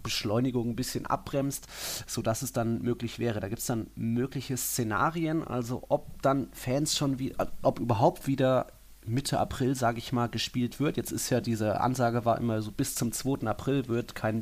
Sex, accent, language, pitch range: male, German, German, 105-125 Hz